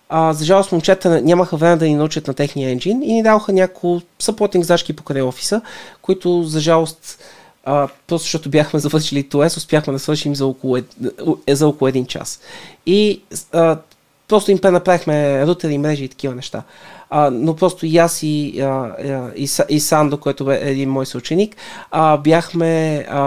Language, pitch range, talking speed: Bulgarian, 140-180 Hz, 150 wpm